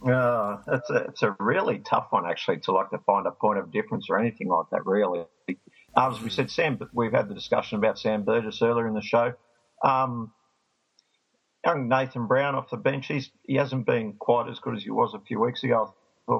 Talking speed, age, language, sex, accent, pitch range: 220 wpm, 50-69, English, male, Australian, 105-125 Hz